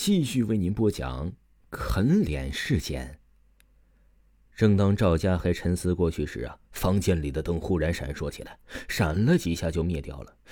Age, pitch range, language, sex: 30-49, 80-130 Hz, Chinese, male